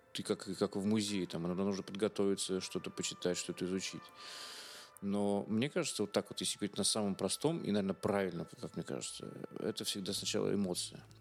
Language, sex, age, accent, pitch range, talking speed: Russian, male, 30-49, native, 95-115 Hz, 185 wpm